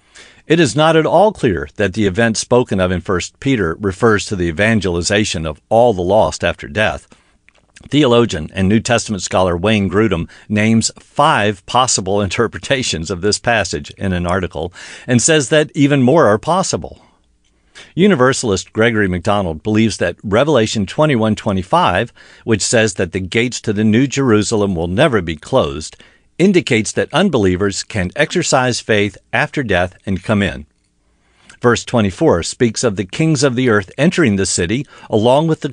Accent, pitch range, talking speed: American, 95-125 Hz, 160 wpm